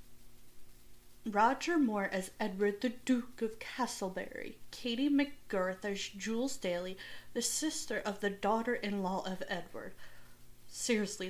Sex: female